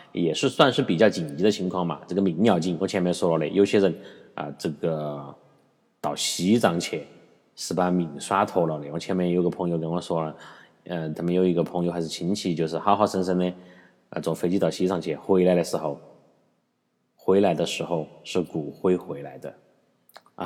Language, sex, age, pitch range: Chinese, male, 30-49, 85-100 Hz